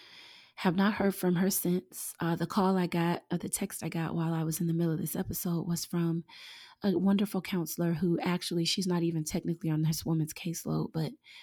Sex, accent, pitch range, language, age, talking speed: female, American, 155-190 Hz, English, 30-49, 215 wpm